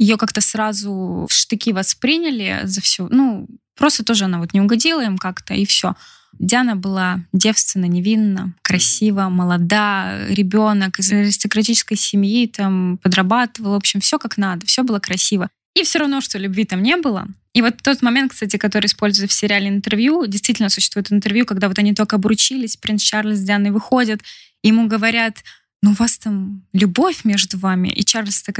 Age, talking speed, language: 20-39, 180 wpm, Russian